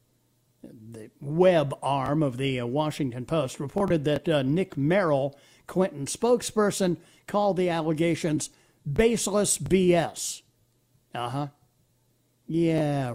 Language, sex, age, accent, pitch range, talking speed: English, male, 60-79, American, 145-190 Hz, 100 wpm